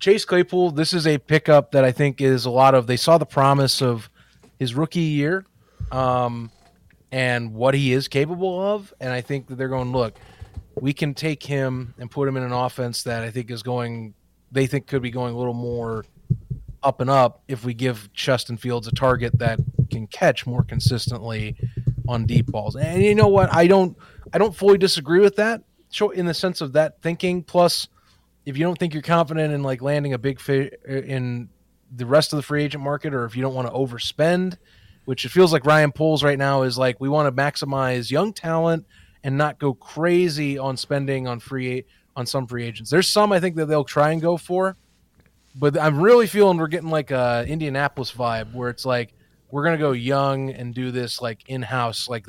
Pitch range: 125-155 Hz